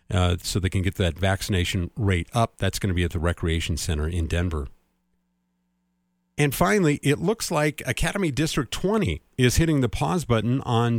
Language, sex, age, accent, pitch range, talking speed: English, male, 50-69, American, 90-125 Hz, 180 wpm